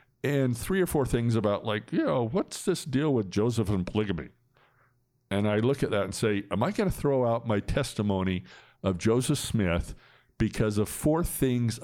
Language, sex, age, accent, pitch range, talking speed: English, male, 60-79, American, 105-135 Hz, 195 wpm